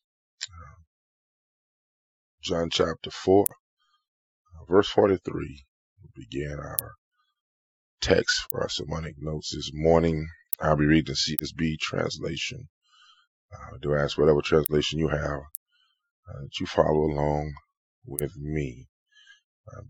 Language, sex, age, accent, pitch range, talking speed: English, male, 20-39, American, 75-115 Hz, 110 wpm